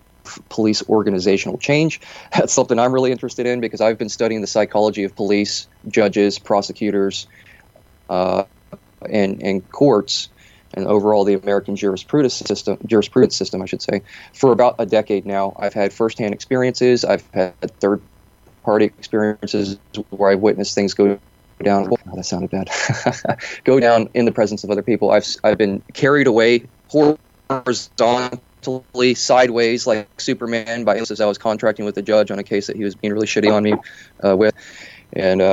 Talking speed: 165 wpm